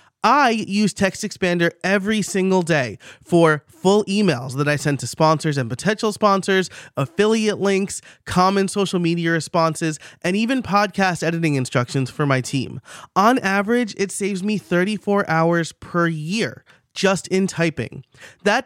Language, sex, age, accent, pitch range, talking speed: English, male, 30-49, American, 150-200 Hz, 140 wpm